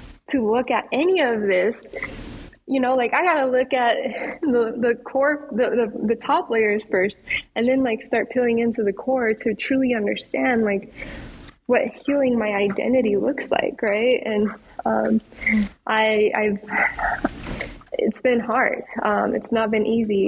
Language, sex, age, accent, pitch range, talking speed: English, female, 10-29, American, 210-245 Hz, 155 wpm